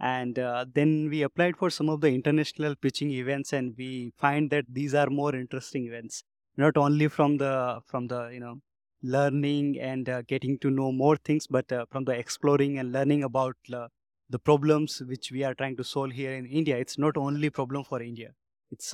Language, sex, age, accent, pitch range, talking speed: English, male, 20-39, Indian, 130-145 Hz, 205 wpm